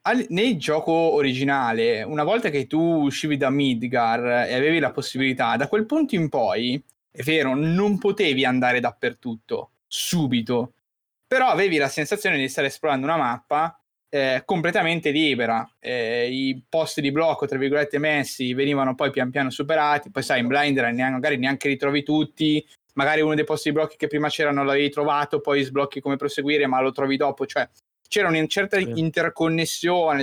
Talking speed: 175 wpm